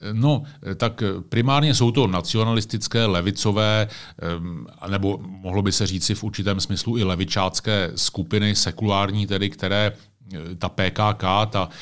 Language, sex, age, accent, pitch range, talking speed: Czech, male, 40-59, native, 95-105 Hz, 120 wpm